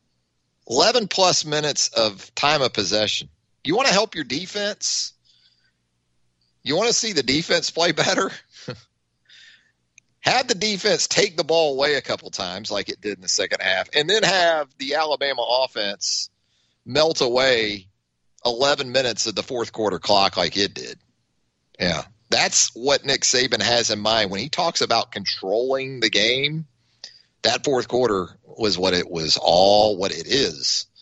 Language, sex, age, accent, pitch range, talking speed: English, male, 40-59, American, 110-155 Hz, 160 wpm